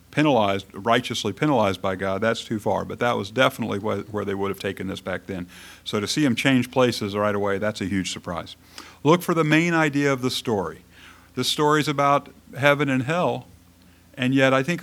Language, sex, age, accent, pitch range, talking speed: English, male, 50-69, American, 90-120 Hz, 205 wpm